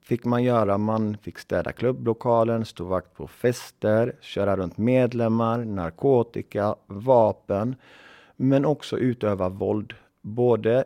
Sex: male